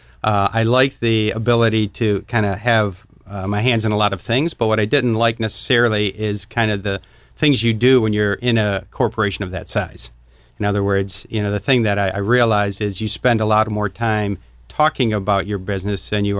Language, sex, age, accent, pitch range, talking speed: English, male, 50-69, American, 100-115 Hz, 225 wpm